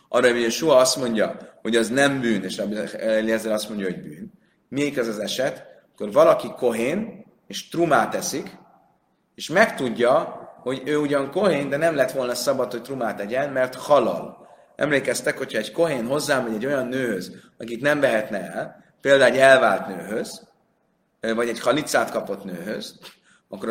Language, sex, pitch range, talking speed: Hungarian, male, 115-165 Hz, 160 wpm